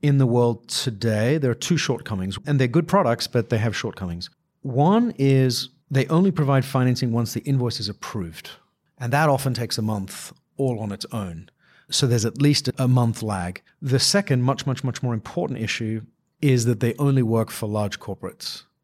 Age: 40-59